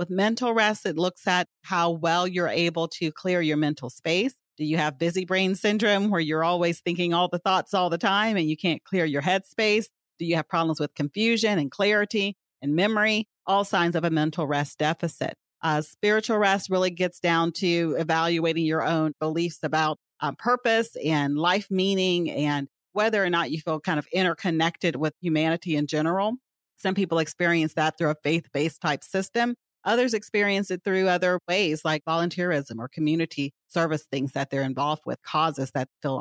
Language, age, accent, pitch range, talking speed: English, 40-59, American, 155-190 Hz, 185 wpm